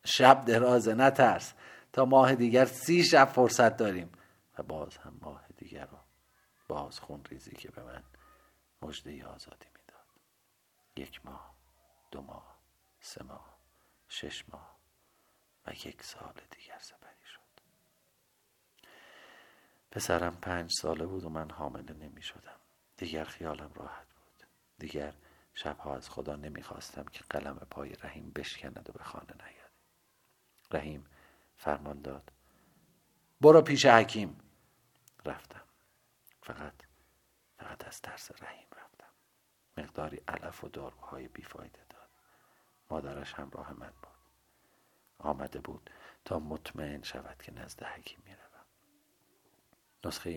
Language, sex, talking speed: Persian, male, 120 wpm